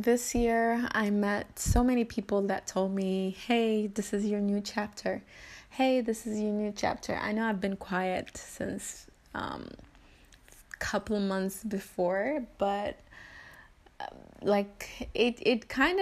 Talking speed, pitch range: 150 wpm, 190-230 Hz